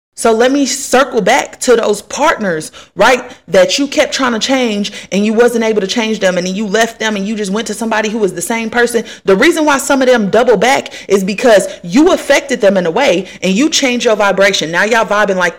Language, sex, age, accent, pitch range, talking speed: English, female, 30-49, American, 210-270 Hz, 245 wpm